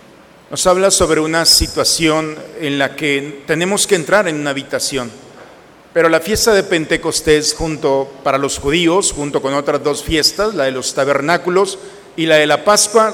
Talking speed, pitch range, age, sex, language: 170 wpm, 155-215 Hz, 50-69, male, Spanish